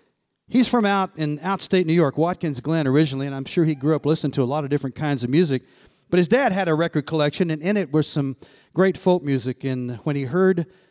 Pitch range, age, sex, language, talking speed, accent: 130-160 Hz, 40-59, male, English, 240 wpm, American